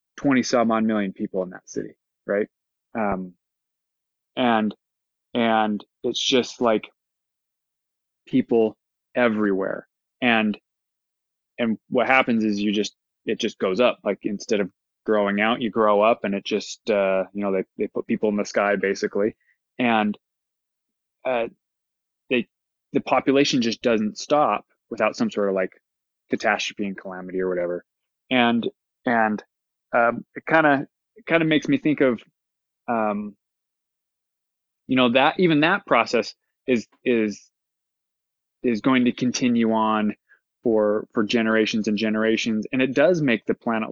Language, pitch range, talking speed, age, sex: English, 105-125 Hz, 145 wpm, 20-39, male